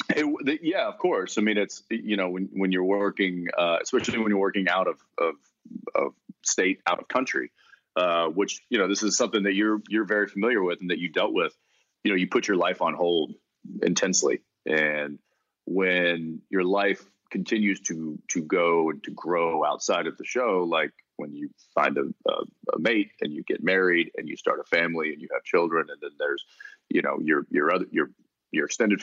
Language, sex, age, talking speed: English, male, 30-49, 205 wpm